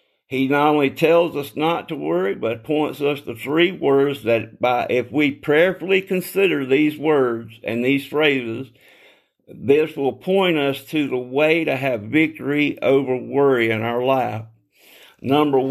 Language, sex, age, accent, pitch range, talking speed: English, male, 50-69, American, 130-170 Hz, 155 wpm